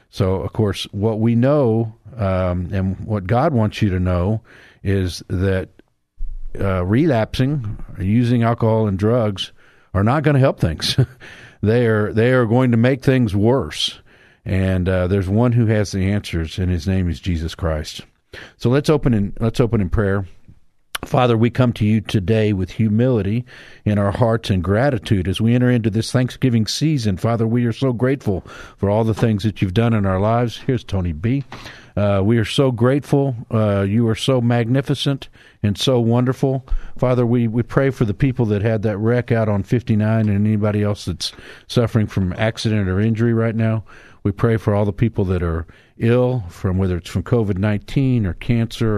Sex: male